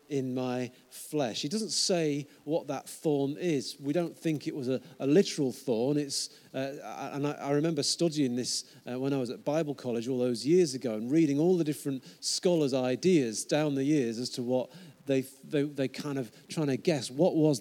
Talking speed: 210 wpm